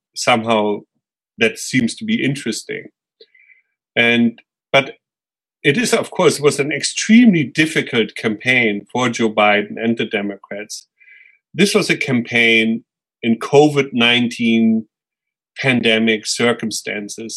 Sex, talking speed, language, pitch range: male, 105 wpm, Slovak, 115-155 Hz